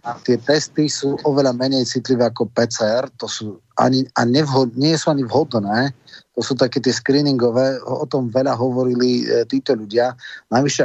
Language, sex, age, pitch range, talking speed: Slovak, male, 30-49, 115-135 Hz, 170 wpm